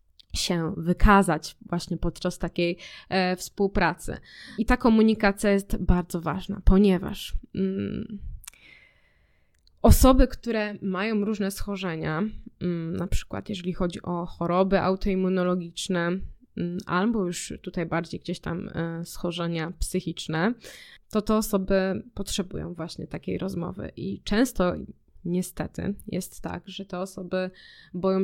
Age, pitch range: 20-39, 175-200 Hz